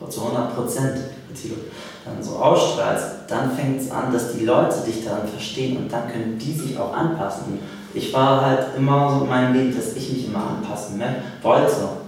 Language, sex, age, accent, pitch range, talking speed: German, male, 30-49, German, 105-130 Hz, 190 wpm